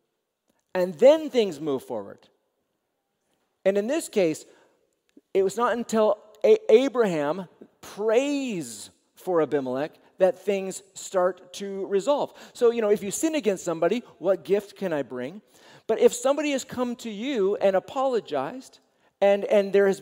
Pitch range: 160-230 Hz